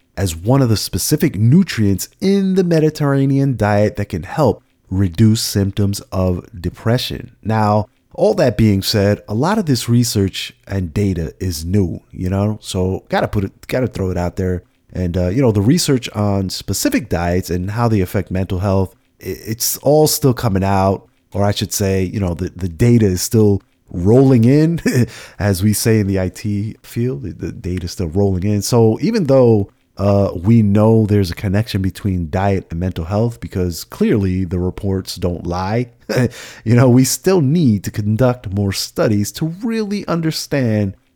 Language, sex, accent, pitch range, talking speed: English, male, American, 95-120 Hz, 175 wpm